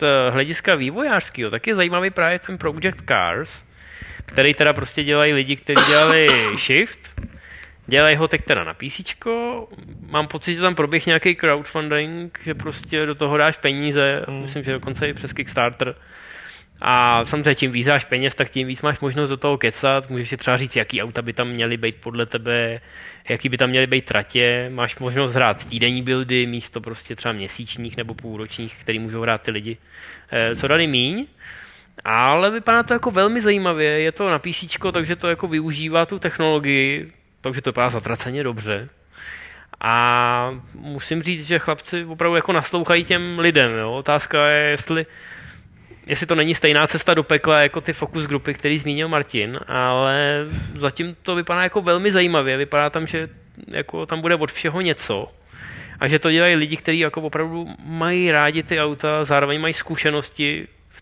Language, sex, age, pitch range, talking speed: Czech, male, 20-39, 125-160 Hz, 170 wpm